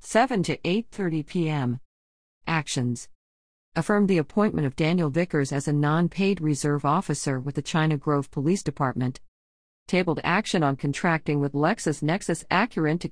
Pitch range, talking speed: 140-190 Hz, 135 wpm